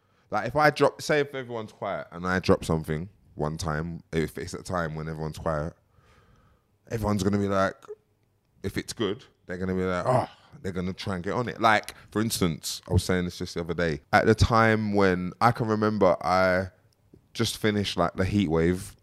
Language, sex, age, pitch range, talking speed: English, male, 20-39, 85-110 Hz, 210 wpm